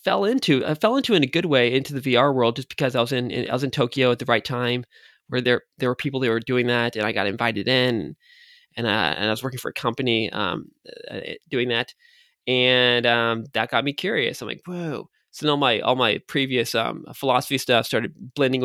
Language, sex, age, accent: English, male, 20-39, American